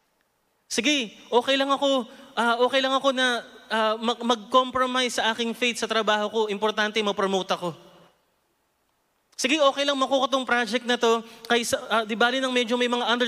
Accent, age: native, 20-39